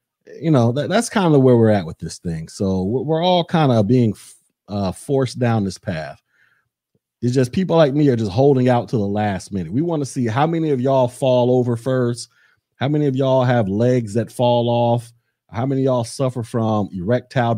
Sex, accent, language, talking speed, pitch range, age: male, American, English, 215 wpm, 115-180 Hz, 30-49